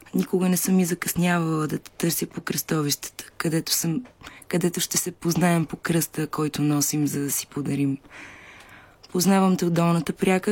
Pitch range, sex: 155-180 Hz, female